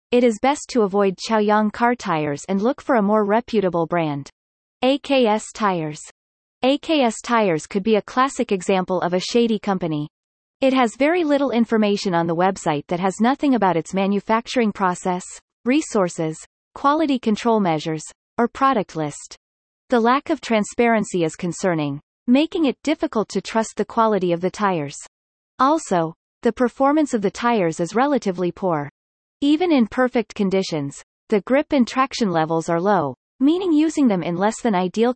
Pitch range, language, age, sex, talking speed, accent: 180-250 Hz, English, 30-49, female, 160 wpm, American